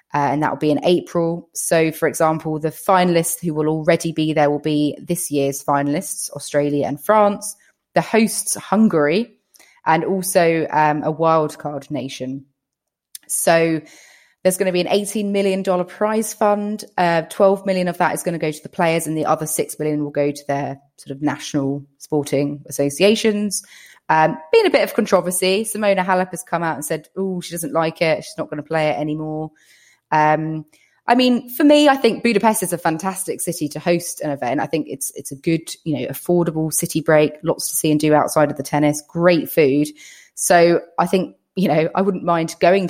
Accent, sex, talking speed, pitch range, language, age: British, female, 200 wpm, 150-185 Hz, English, 20-39